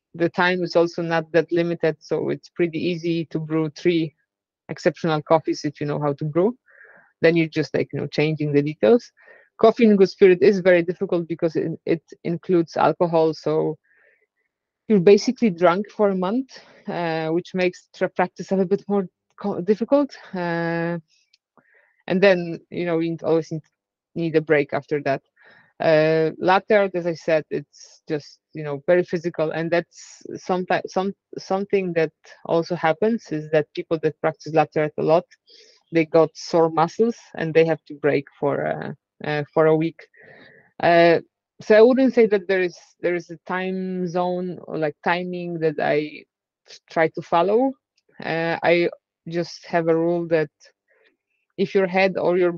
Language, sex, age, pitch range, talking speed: English, female, 20-39, 160-190 Hz, 165 wpm